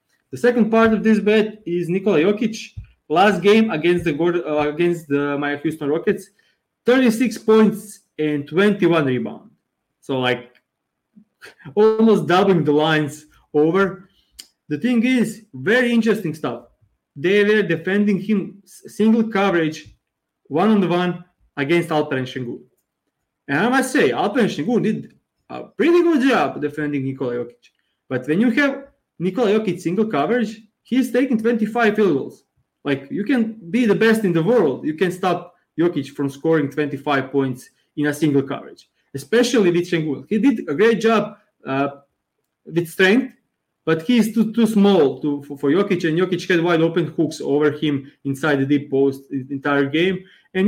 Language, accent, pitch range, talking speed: English, Serbian, 150-220 Hz, 160 wpm